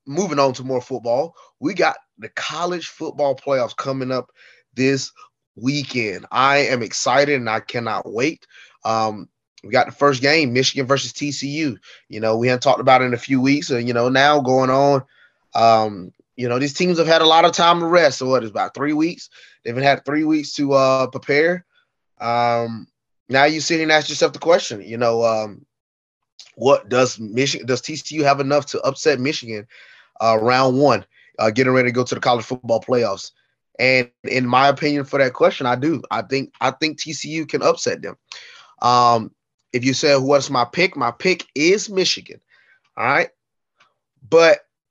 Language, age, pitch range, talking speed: English, 20-39, 120-145 Hz, 190 wpm